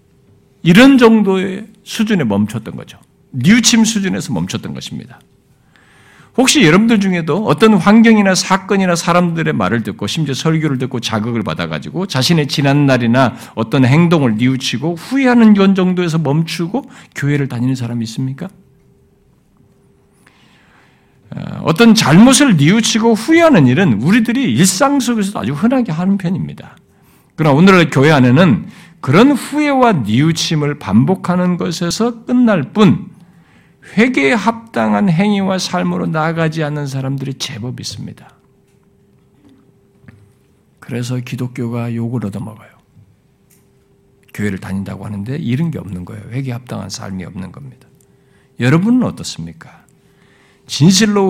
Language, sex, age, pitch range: Korean, male, 50-69, 130-210 Hz